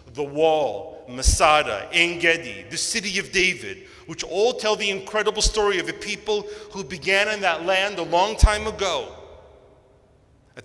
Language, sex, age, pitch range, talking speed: English, male, 40-59, 130-175 Hz, 160 wpm